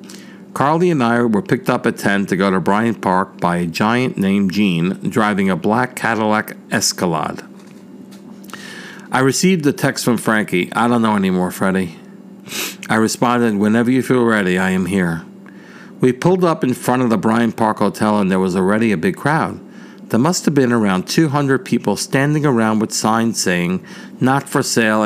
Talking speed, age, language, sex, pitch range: 180 wpm, 50-69, English, male, 105-155 Hz